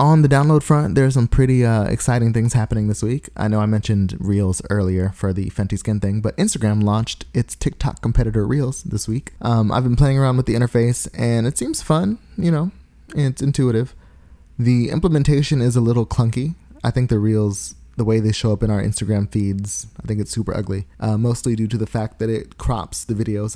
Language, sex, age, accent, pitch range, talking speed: English, male, 20-39, American, 105-125 Hz, 215 wpm